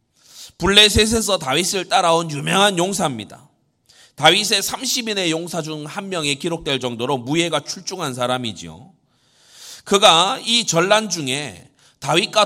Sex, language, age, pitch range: male, Korean, 30-49, 135-210 Hz